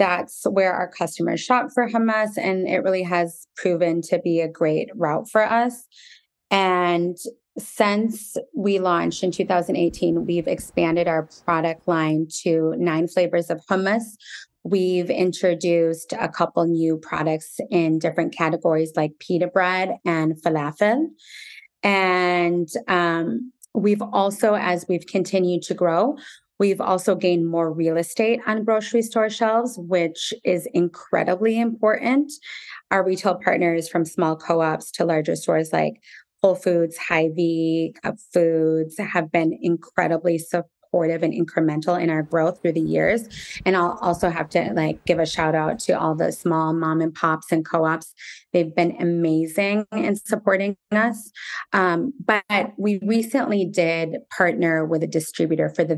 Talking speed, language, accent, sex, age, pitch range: 145 wpm, English, American, female, 30-49, 165-200 Hz